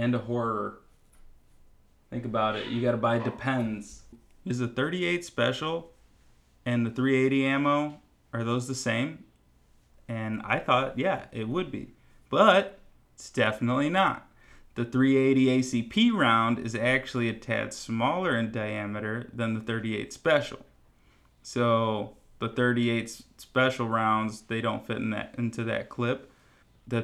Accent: American